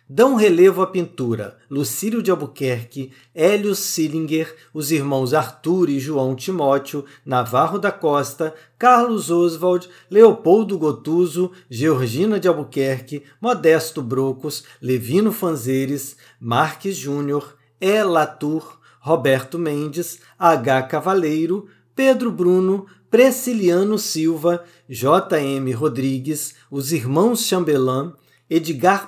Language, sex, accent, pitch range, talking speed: Portuguese, male, Brazilian, 135-180 Hz, 95 wpm